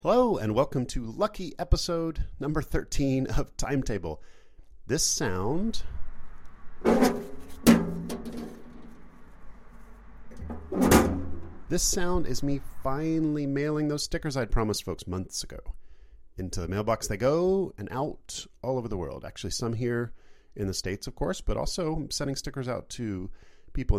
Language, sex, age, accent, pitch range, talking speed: English, male, 40-59, American, 90-135 Hz, 130 wpm